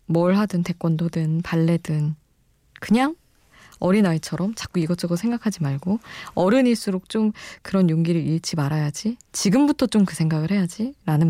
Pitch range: 155-215 Hz